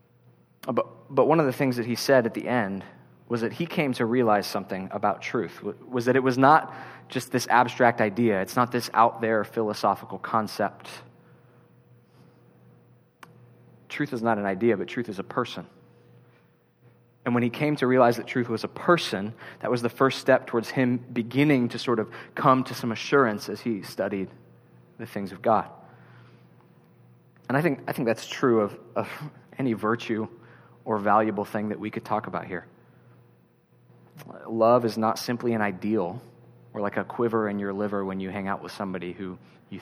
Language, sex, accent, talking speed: English, male, American, 180 wpm